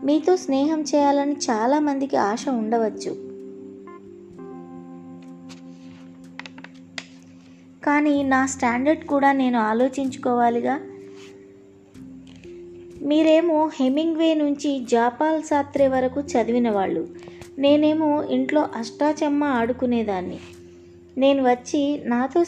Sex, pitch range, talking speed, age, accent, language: female, 210-290 Hz, 75 wpm, 20-39, native, Telugu